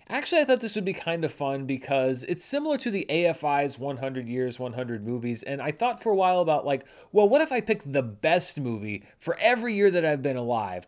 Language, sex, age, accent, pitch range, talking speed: English, male, 30-49, American, 130-200 Hz, 230 wpm